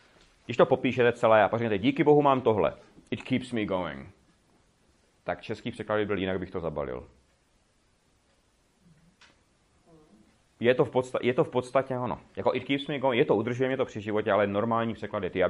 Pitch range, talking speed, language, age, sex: 95-125 Hz, 180 wpm, Czech, 30-49, male